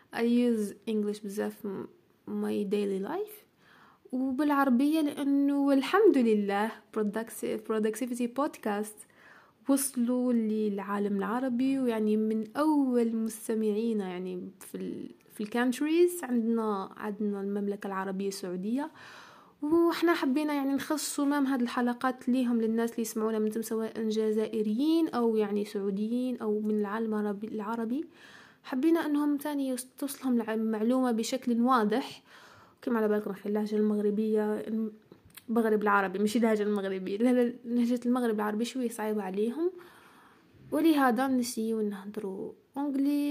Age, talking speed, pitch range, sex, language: 20-39, 110 wpm, 215-270 Hz, female, Arabic